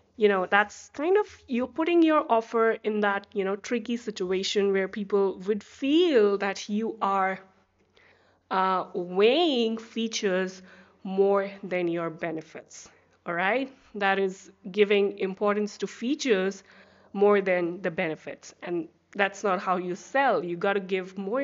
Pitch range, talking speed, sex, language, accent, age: 195-255 Hz, 145 wpm, female, English, Indian, 20-39